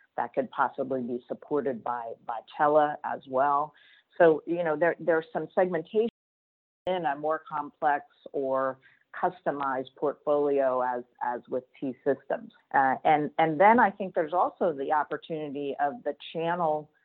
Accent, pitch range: American, 140-170 Hz